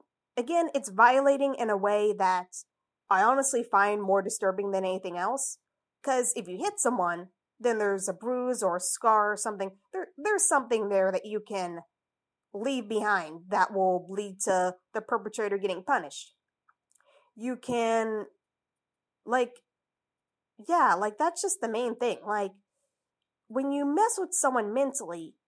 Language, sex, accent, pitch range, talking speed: English, female, American, 195-265 Hz, 145 wpm